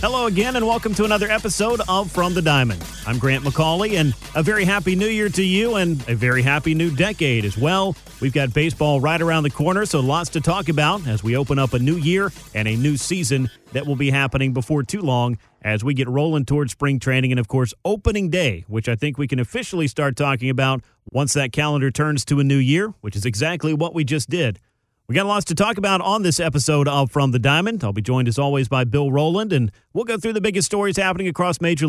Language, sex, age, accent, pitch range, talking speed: English, male, 40-59, American, 130-175 Hz, 240 wpm